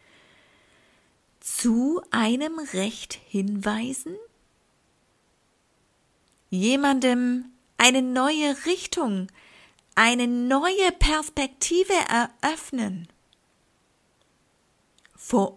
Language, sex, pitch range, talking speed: German, female, 200-270 Hz, 50 wpm